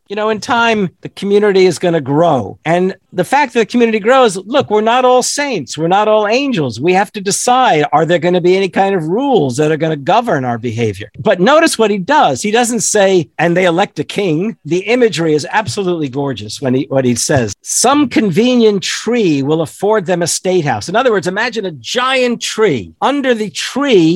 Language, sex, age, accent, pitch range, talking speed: English, male, 50-69, American, 155-230 Hz, 220 wpm